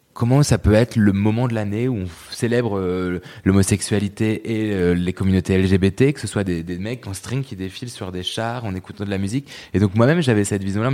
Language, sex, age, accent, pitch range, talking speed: French, male, 20-39, French, 95-120 Hz, 240 wpm